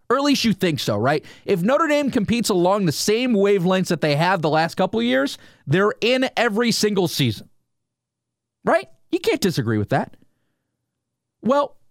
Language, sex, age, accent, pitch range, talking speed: English, male, 30-49, American, 165-275 Hz, 175 wpm